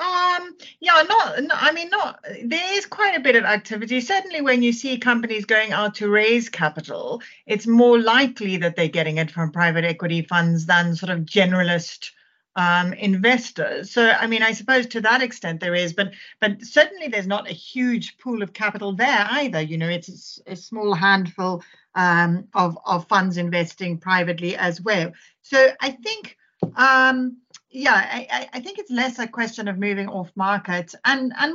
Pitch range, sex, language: 190-265 Hz, female, English